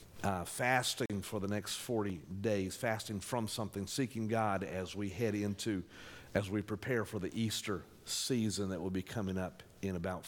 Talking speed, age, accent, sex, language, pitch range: 175 wpm, 50-69, American, male, English, 105-130 Hz